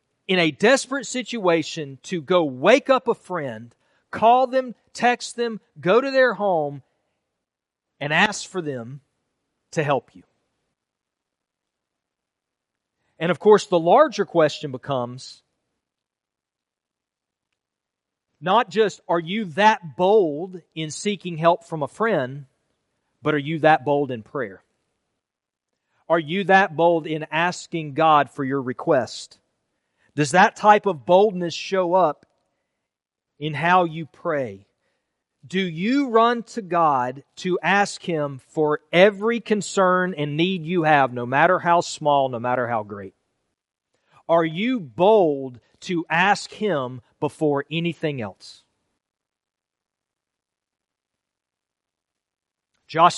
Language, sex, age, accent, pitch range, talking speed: English, male, 40-59, American, 145-195 Hz, 120 wpm